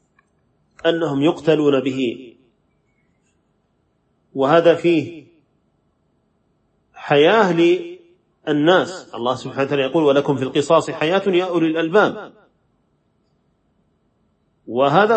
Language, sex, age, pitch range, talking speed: Arabic, male, 40-59, 140-180 Hz, 65 wpm